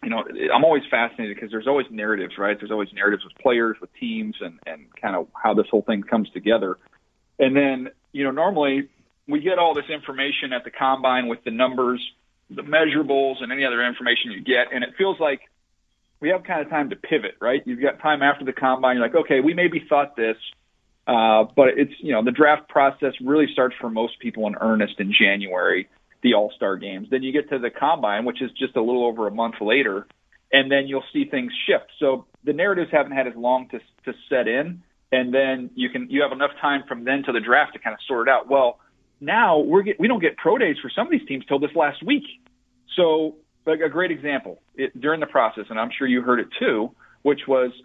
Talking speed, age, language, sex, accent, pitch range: 230 wpm, 40-59, English, male, American, 120-150 Hz